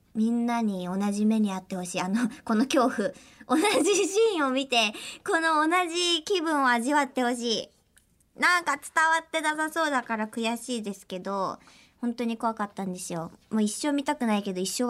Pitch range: 215-305 Hz